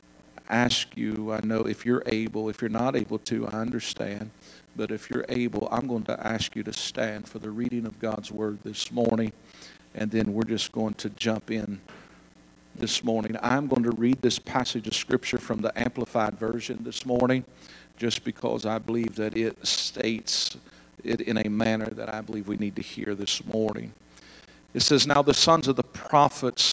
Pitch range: 105-125 Hz